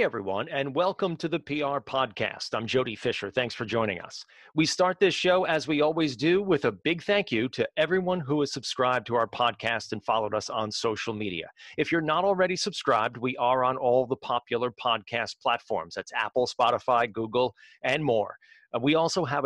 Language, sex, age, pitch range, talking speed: English, male, 40-59, 115-155 Hz, 195 wpm